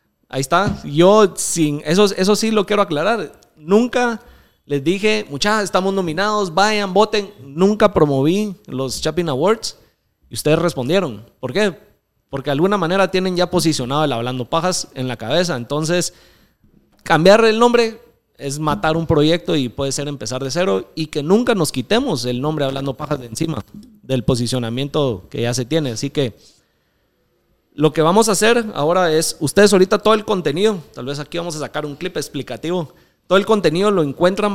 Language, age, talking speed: Spanish, 30-49, 175 wpm